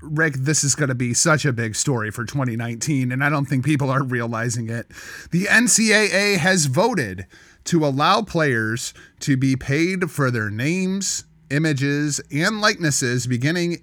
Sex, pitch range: male, 125-165 Hz